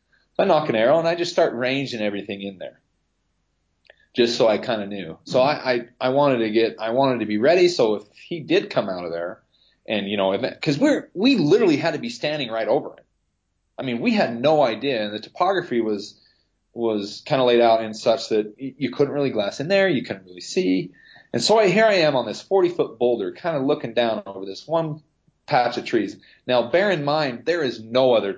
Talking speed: 230 wpm